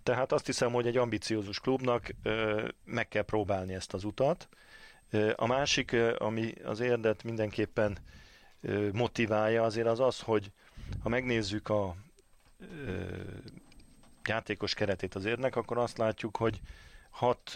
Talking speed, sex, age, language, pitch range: 125 wpm, male, 40-59, Hungarian, 100-115 Hz